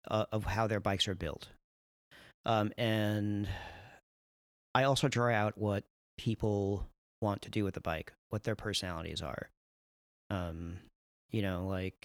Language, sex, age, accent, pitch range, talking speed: English, male, 40-59, American, 90-115 Hz, 145 wpm